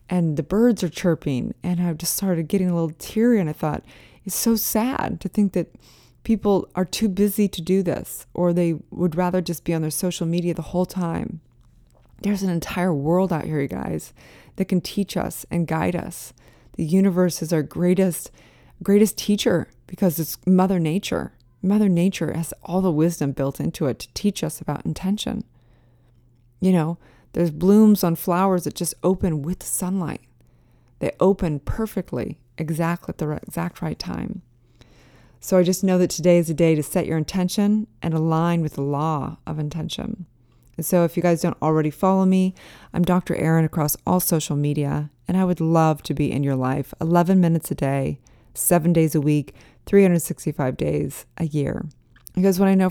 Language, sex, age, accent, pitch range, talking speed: English, female, 20-39, American, 150-185 Hz, 185 wpm